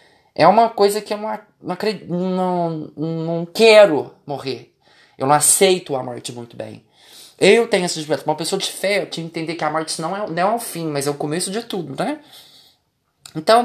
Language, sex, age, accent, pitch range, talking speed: Portuguese, male, 20-39, Brazilian, 160-235 Hz, 195 wpm